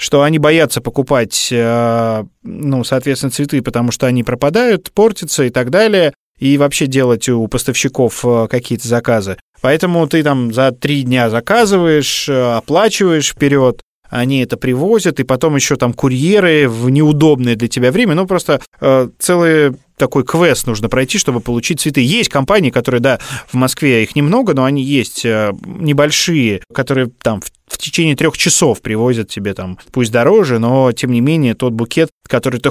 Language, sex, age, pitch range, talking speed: Russian, male, 20-39, 120-150 Hz, 155 wpm